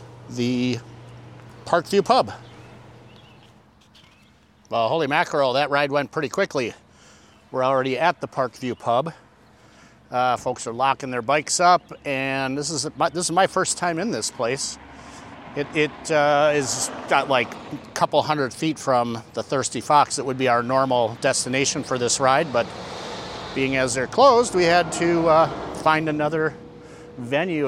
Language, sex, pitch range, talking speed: English, male, 125-160 Hz, 150 wpm